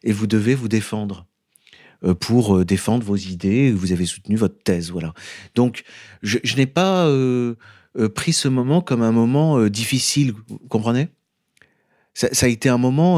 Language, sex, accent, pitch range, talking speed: French, male, French, 110-140 Hz, 170 wpm